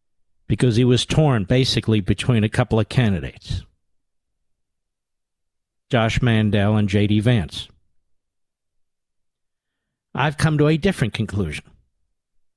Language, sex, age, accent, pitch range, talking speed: English, male, 50-69, American, 105-130 Hz, 100 wpm